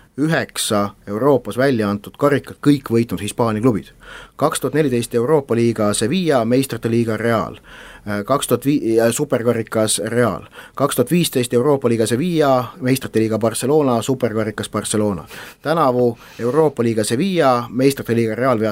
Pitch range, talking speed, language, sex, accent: 115-145 Hz, 115 wpm, English, male, Finnish